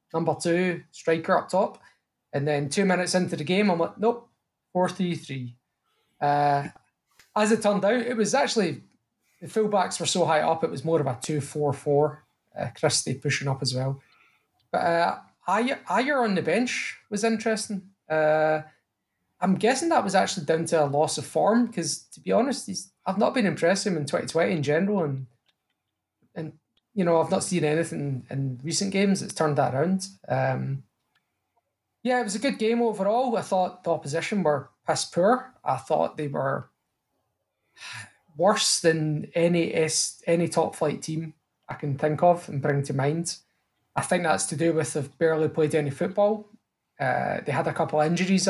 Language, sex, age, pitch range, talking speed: English, male, 20-39, 145-190 Hz, 180 wpm